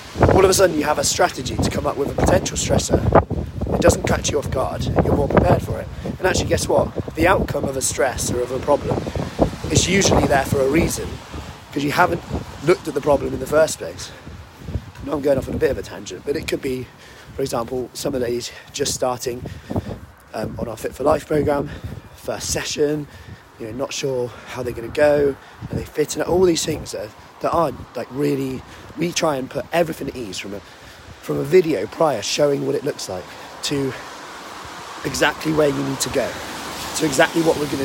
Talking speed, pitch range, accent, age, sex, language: 220 wpm, 120-150 Hz, British, 30-49, male, English